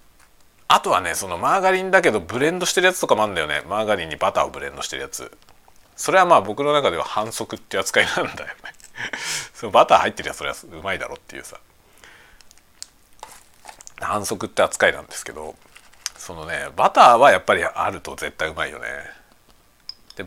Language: Japanese